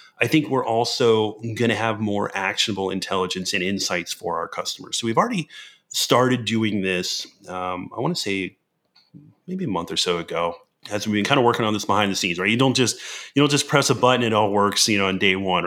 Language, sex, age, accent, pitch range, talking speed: English, male, 30-49, American, 100-125 Hz, 230 wpm